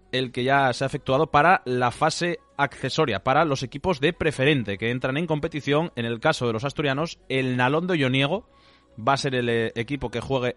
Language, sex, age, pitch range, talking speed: Spanish, male, 20-39, 115-150 Hz, 205 wpm